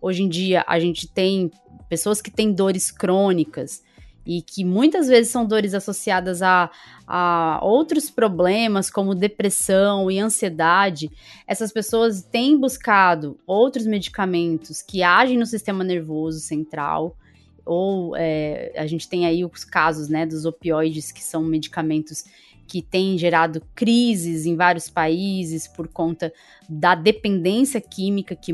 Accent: Brazilian